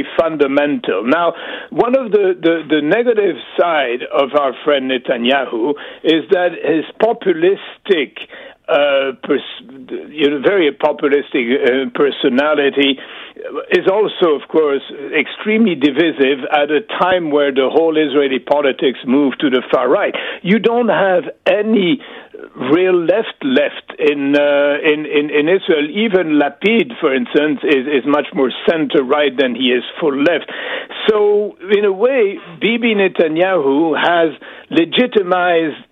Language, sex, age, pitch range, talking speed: English, male, 60-79, 145-225 Hz, 130 wpm